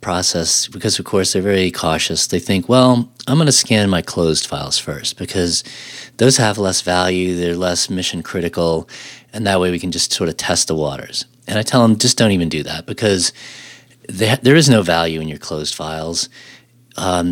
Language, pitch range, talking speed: English, 90-115 Hz, 200 wpm